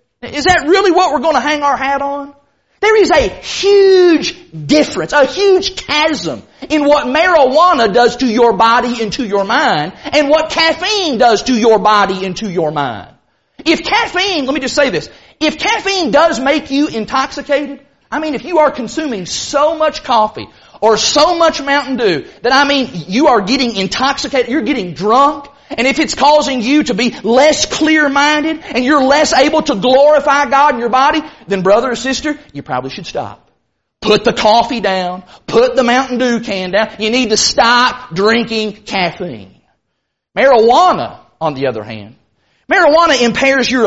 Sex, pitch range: male, 230-310 Hz